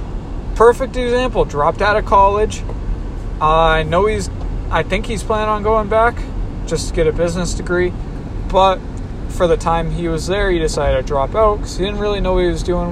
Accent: American